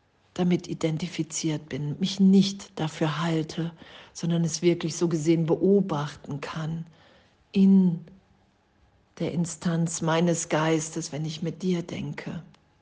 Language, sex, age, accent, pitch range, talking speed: German, female, 50-69, German, 155-175 Hz, 110 wpm